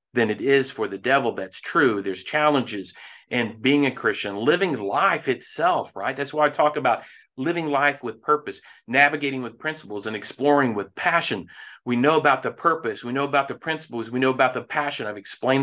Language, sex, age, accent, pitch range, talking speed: English, male, 40-59, American, 125-155 Hz, 195 wpm